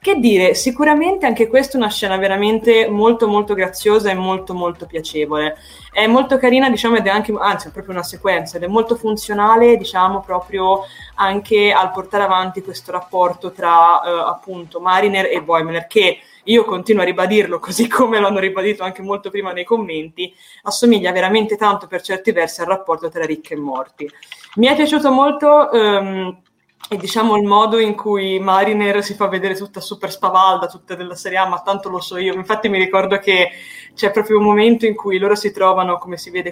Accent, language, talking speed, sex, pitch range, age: native, Italian, 190 wpm, female, 185-225 Hz, 20-39